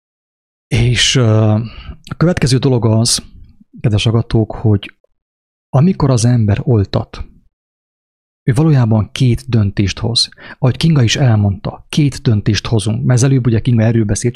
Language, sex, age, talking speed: English, male, 30-49, 120 wpm